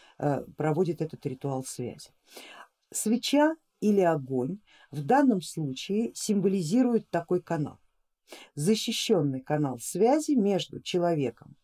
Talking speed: 95 wpm